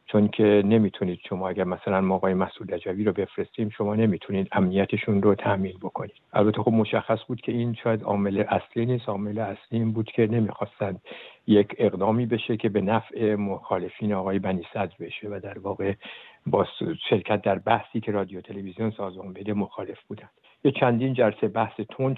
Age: 60-79